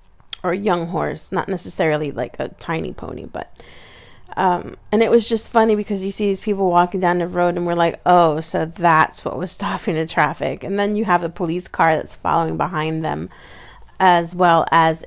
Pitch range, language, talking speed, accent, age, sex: 165-195 Hz, English, 205 wpm, American, 30-49, female